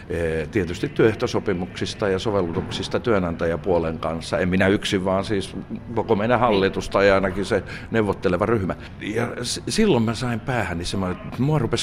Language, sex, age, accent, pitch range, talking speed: Finnish, male, 60-79, native, 95-120 Hz, 145 wpm